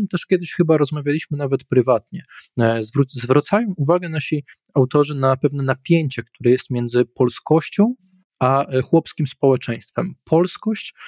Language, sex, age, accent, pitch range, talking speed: Polish, male, 20-39, native, 120-140 Hz, 115 wpm